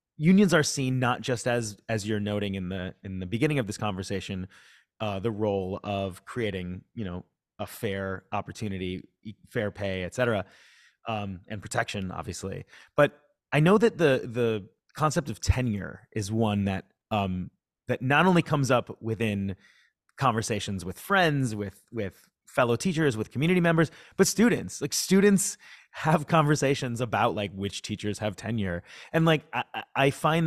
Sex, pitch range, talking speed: male, 100-140 Hz, 155 wpm